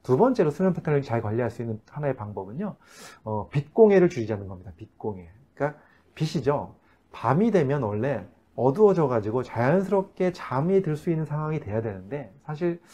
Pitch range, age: 115-155 Hz, 30-49